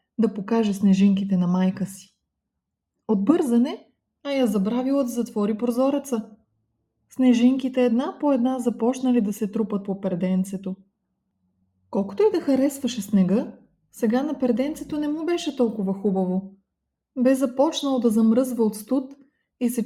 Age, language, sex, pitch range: 20-39, Bulgarian, female, 200-275 Hz